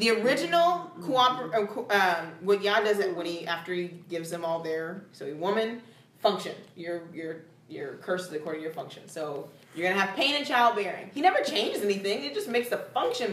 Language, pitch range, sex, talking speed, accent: English, 175-255 Hz, female, 210 wpm, American